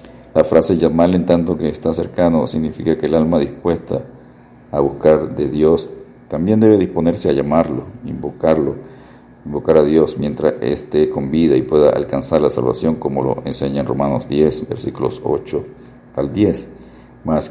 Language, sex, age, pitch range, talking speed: Spanish, male, 50-69, 70-85 Hz, 160 wpm